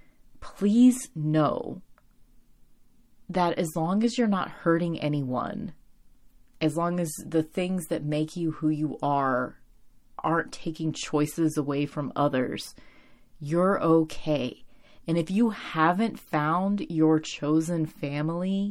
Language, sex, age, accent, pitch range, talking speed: English, female, 30-49, American, 150-175 Hz, 120 wpm